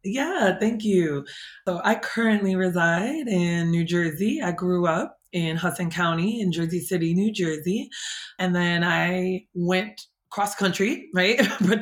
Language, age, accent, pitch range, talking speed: English, 20-39, American, 170-205 Hz, 145 wpm